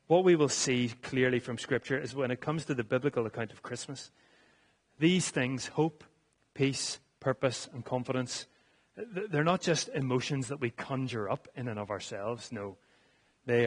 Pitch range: 115-140 Hz